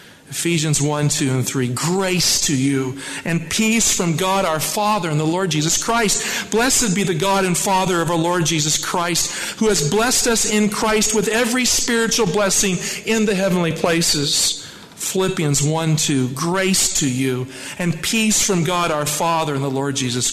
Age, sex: 50-69, male